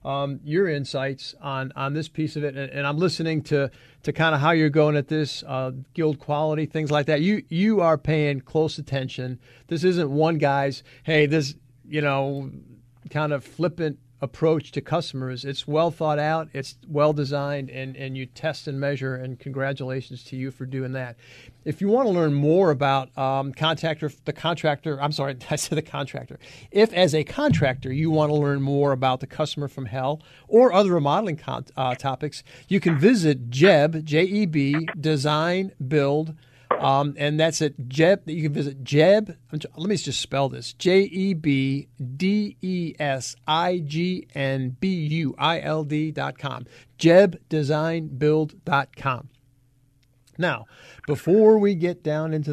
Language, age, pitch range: English, 50-69, 135-160 Hz